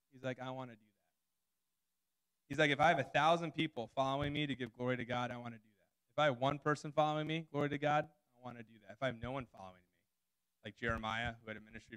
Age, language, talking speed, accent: 20-39, English, 275 wpm, American